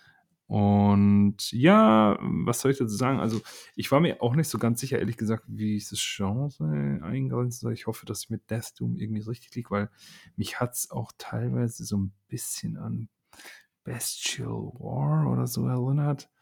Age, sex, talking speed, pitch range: 40-59, male, 180 wpm, 100-125 Hz